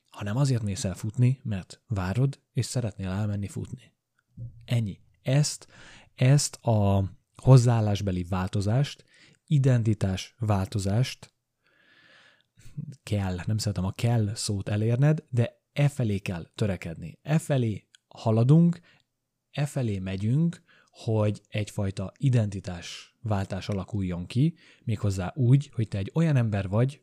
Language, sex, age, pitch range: Hungarian, male, 30-49, 100-130 Hz